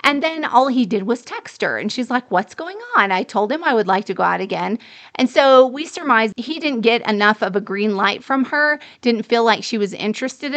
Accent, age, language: American, 30-49, English